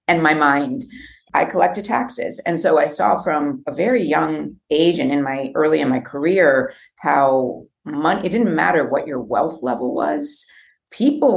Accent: American